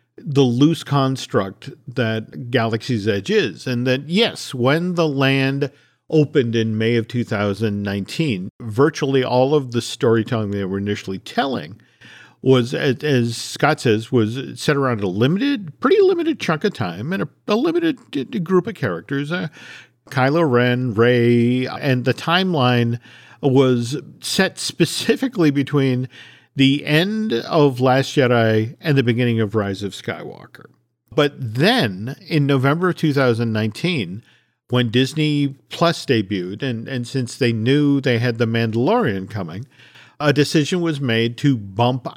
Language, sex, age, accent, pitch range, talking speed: English, male, 50-69, American, 115-150 Hz, 140 wpm